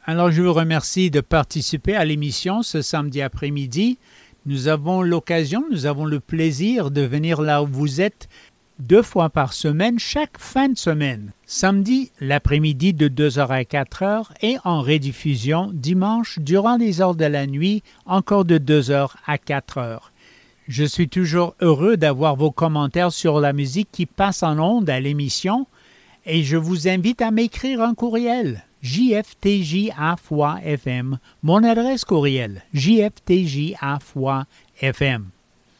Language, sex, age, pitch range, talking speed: English, male, 50-69, 145-200 Hz, 135 wpm